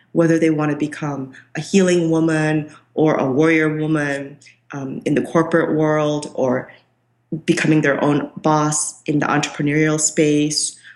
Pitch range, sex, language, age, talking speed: 140-165 Hz, female, English, 30-49, 140 wpm